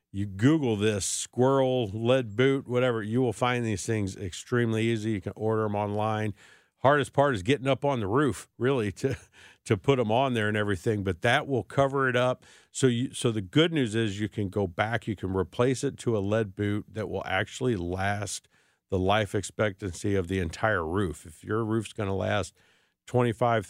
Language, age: English, 50-69